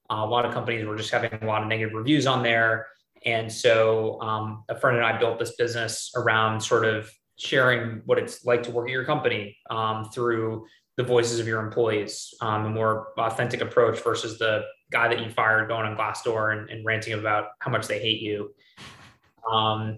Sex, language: male, English